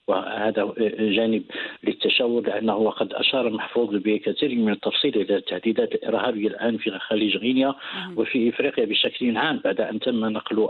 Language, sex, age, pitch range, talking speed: English, male, 50-69, 110-140 Hz, 135 wpm